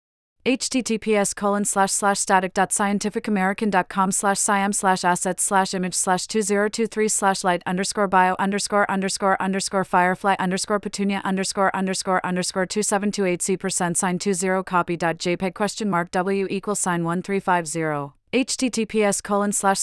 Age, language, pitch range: 30-49, English, 175-200 Hz